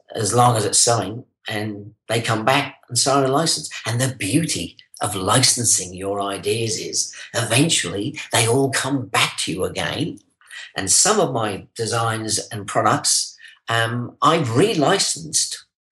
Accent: British